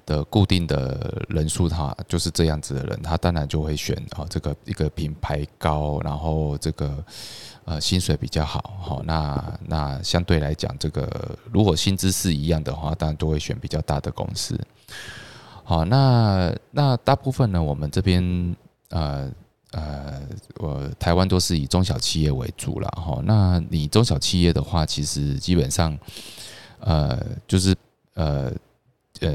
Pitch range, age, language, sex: 75-95 Hz, 20-39, Chinese, male